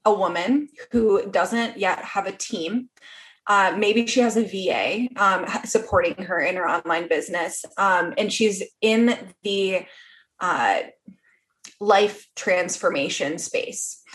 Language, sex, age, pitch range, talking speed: English, female, 20-39, 195-265 Hz, 125 wpm